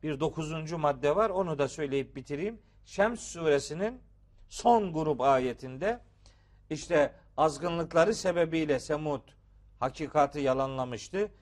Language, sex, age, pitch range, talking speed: Turkish, male, 50-69, 135-195 Hz, 100 wpm